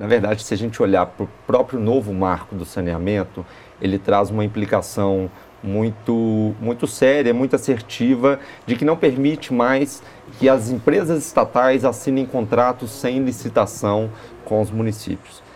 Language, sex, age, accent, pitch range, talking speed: Portuguese, male, 40-59, Brazilian, 100-130 Hz, 145 wpm